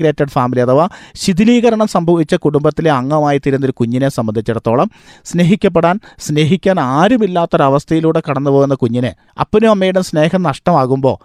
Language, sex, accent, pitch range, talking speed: Malayalam, male, native, 140-180 Hz, 105 wpm